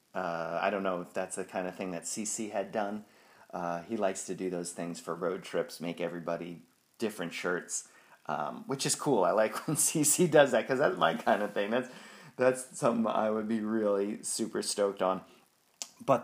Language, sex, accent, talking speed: English, male, American, 205 wpm